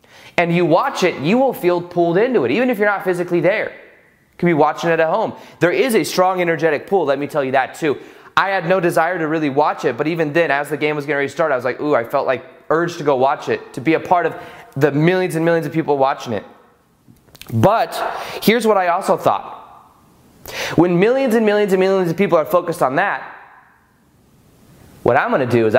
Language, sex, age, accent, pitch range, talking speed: English, male, 20-39, American, 150-185 Hz, 235 wpm